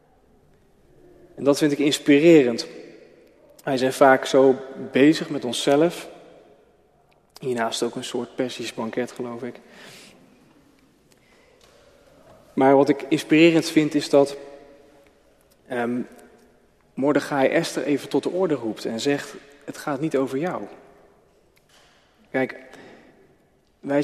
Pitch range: 125-155 Hz